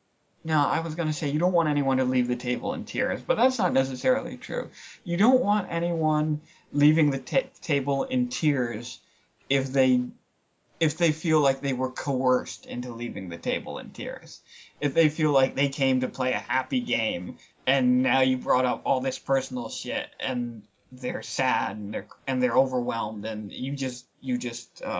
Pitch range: 130-180 Hz